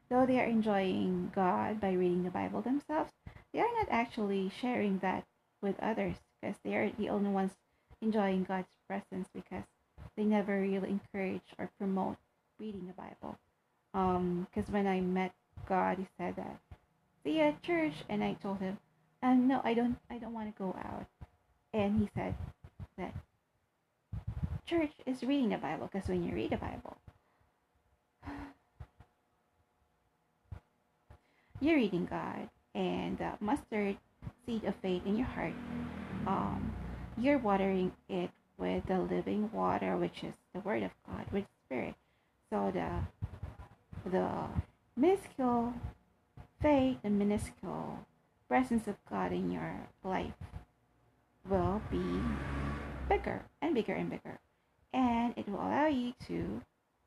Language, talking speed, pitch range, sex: English, 140 wpm, 185-245 Hz, female